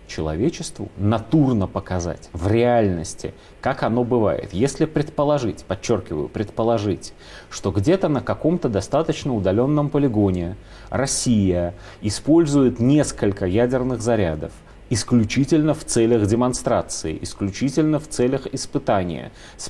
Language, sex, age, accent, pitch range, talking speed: Russian, male, 30-49, native, 95-120 Hz, 100 wpm